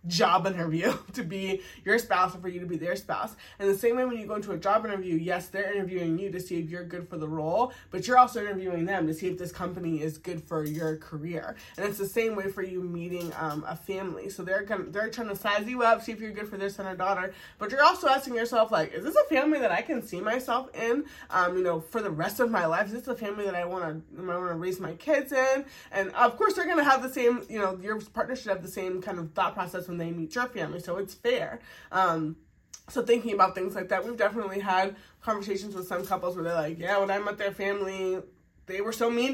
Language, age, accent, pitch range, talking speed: English, 20-39, American, 170-215 Hz, 265 wpm